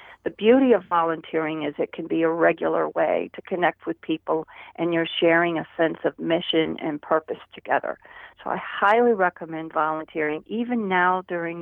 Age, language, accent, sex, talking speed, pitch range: 50-69, English, American, female, 170 wpm, 165-210 Hz